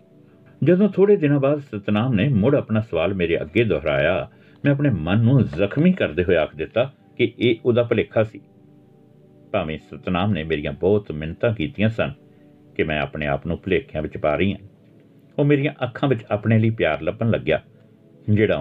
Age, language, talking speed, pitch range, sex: 60-79, Punjabi, 170 wpm, 90-135 Hz, male